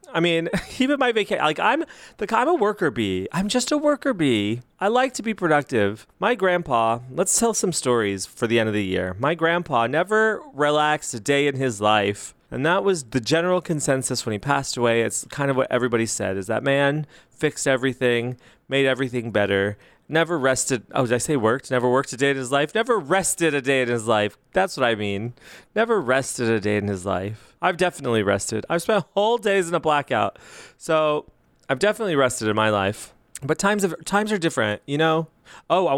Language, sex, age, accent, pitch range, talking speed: English, male, 30-49, American, 115-165 Hz, 210 wpm